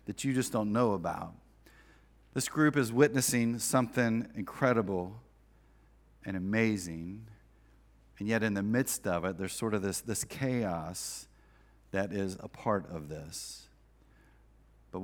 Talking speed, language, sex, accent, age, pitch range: 135 wpm, English, male, American, 40-59, 95-125 Hz